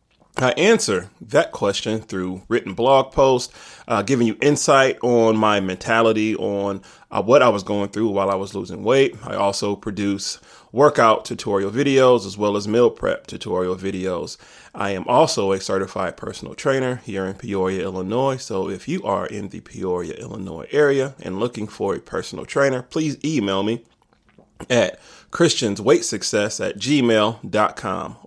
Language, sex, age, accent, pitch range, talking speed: English, male, 30-49, American, 100-135 Hz, 155 wpm